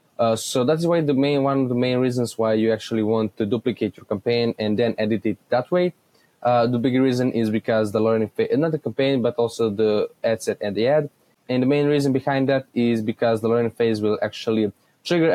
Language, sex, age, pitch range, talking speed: English, male, 20-39, 110-135 Hz, 235 wpm